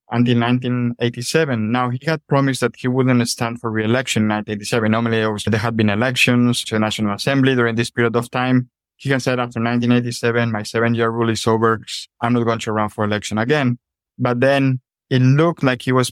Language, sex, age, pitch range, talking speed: English, male, 20-39, 115-130 Hz, 205 wpm